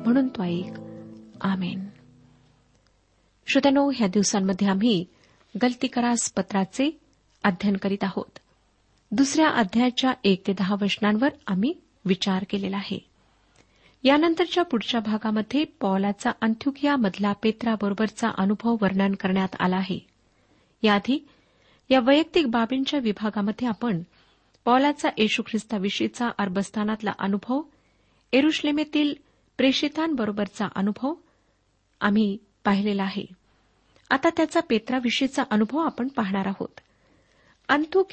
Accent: native